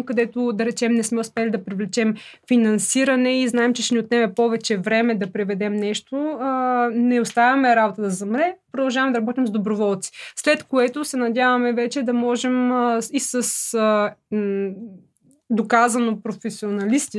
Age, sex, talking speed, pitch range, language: 20-39, female, 145 wpm, 215-255 Hz, Bulgarian